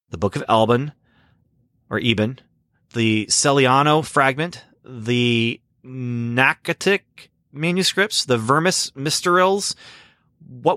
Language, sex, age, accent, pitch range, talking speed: English, male, 30-49, American, 100-135 Hz, 90 wpm